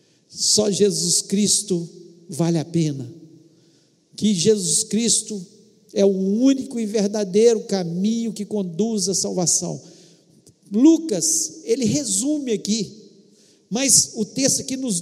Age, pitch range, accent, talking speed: 50-69, 195-255 Hz, Brazilian, 110 wpm